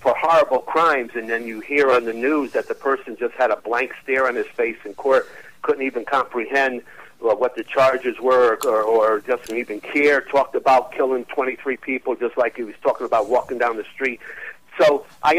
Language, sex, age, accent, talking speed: English, male, 50-69, American, 205 wpm